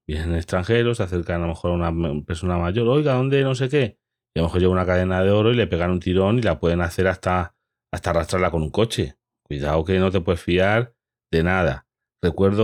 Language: Spanish